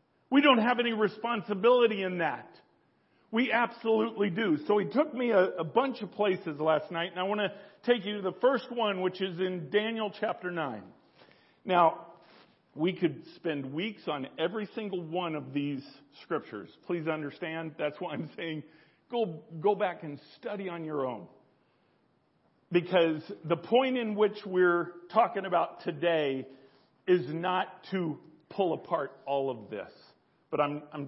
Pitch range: 140-200 Hz